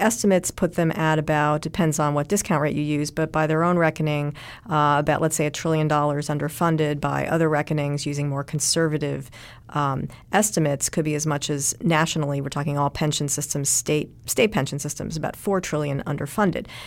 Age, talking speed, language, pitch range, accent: 40-59, 185 wpm, English, 145-160 Hz, American